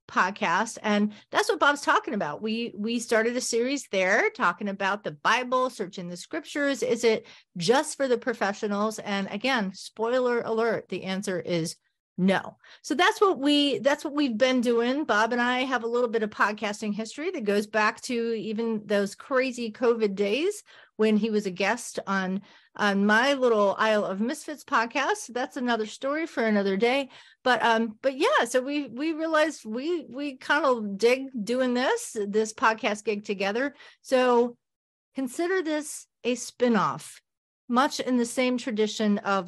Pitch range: 205-260 Hz